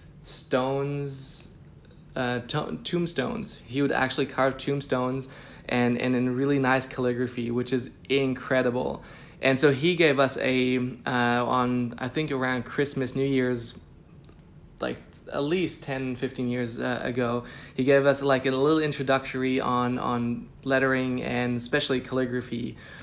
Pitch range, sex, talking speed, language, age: 125-140 Hz, male, 135 wpm, English, 20-39